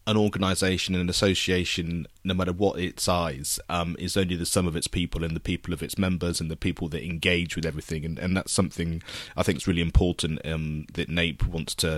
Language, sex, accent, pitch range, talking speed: English, male, British, 85-95 Hz, 225 wpm